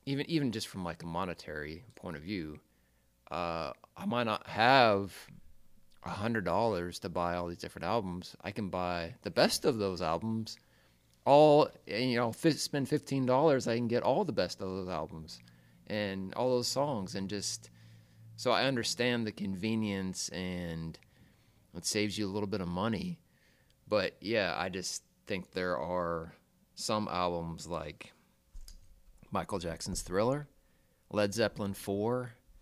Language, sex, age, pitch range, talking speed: English, male, 30-49, 85-110 Hz, 155 wpm